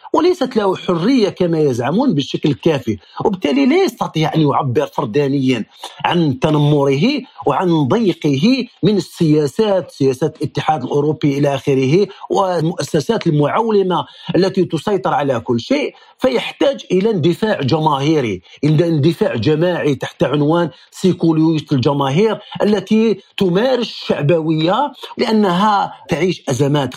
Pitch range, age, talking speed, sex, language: 145-200 Hz, 50-69, 110 wpm, male, Arabic